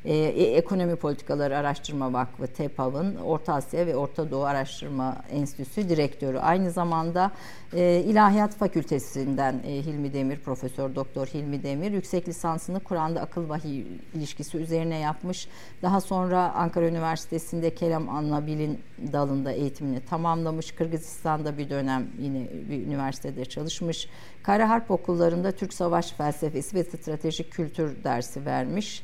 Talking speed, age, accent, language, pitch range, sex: 125 wpm, 50-69, native, Turkish, 140-175 Hz, female